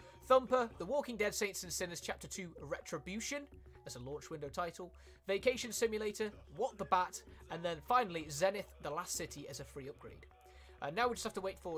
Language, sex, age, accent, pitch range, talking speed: Italian, male, 20-39, British, 140-220 Hz, 205 wpm